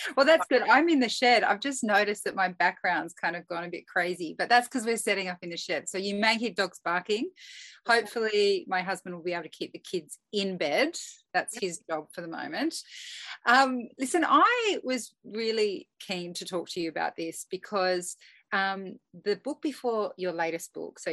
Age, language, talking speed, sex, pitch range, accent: 30-49, English, 205 wpm, female, 180-255 Hz, Australian